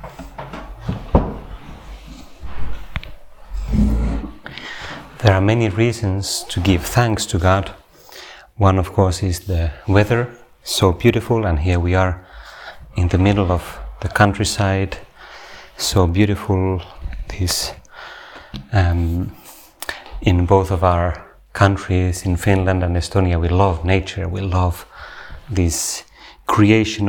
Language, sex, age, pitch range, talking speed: Finnish, male, 30-49, 85-100 Hz, 105 wpm